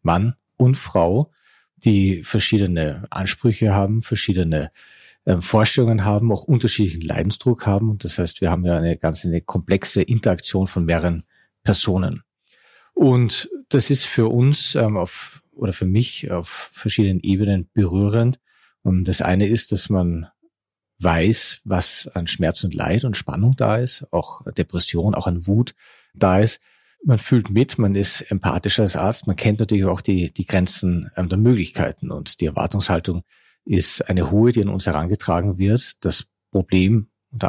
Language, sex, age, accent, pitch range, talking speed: German, male, 40-59, German, 90-110 Hz, 150 wpm